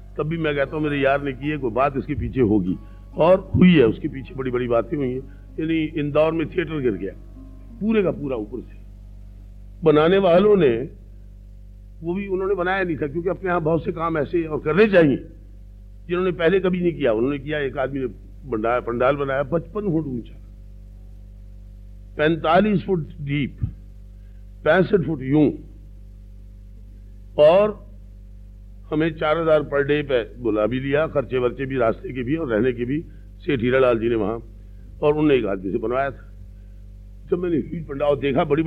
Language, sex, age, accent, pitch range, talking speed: Hindi, male, 50-69, native, 100-155 Hz, 170 wpm